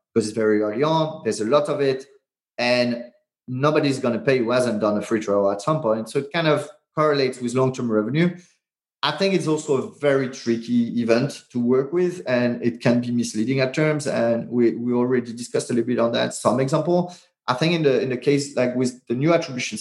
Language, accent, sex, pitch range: English, French, male, 120-150 Hz